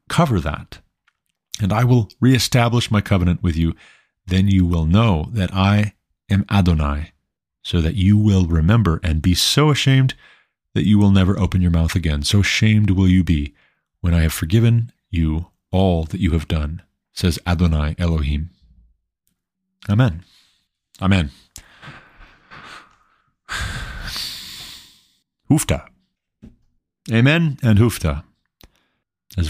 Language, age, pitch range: English, 40-59, 85-110 Hz